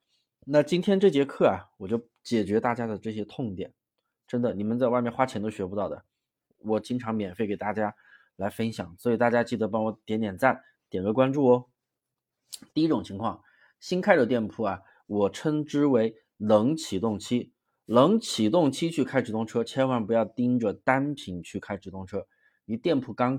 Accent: native